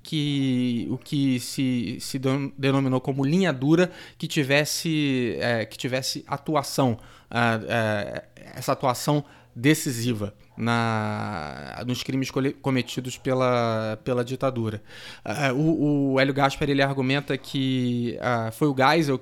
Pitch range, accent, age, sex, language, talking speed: 120-145 Hz, Brazilian, 20-39, male, Portuguese, 125 wpm